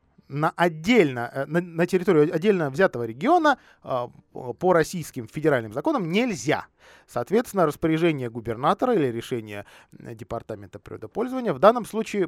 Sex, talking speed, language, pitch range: male, 105 wpm, Russian, 120-190 Hz